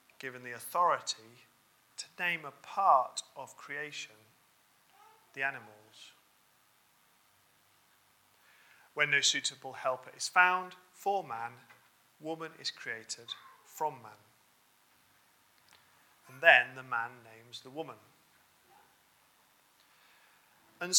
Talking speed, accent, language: 90 wpm, British, English